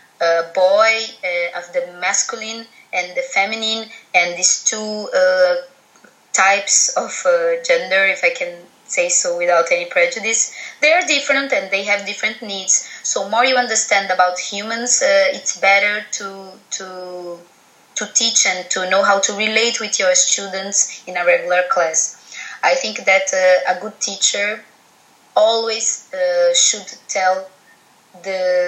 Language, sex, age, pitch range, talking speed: English, female, 20-39, 180-235 Hz, 150 wpm